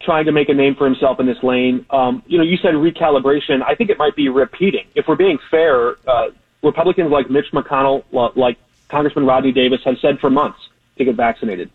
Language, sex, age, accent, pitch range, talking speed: English, male, 30-49, American, 130-160 Hz, 215 wpm